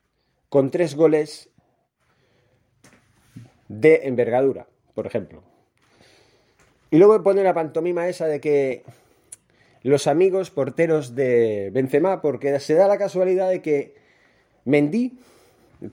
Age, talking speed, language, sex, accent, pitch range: 30-49, 110 wpm, Spanish, male, Spanish, 130-175 Hz